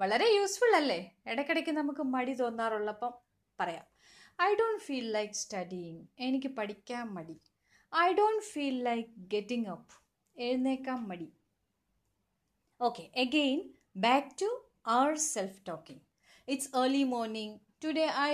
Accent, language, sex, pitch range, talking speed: native, Malayalam, female, 225-330 Hz, 110 wpm